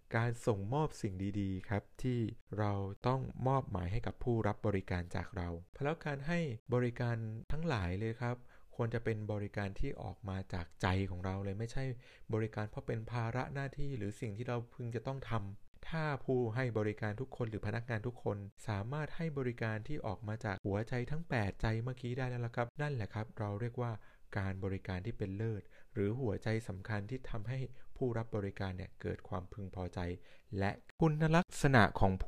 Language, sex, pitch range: Thai, male, 100-130 Hz